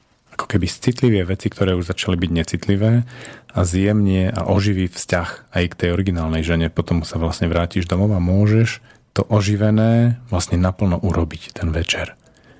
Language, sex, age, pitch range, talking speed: Slovak, male, 40-59, 85-110 Hz, 155 wpm